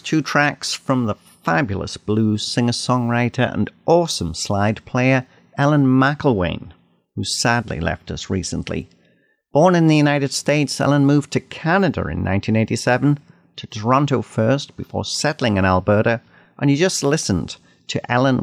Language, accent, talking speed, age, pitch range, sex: English, British, 135 wpm, 50-69, 105-140 Hz, male